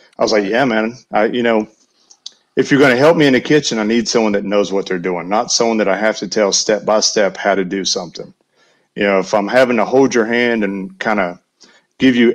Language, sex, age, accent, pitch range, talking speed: English, male, 40-59, American, 105-120 Hz, 255 wpm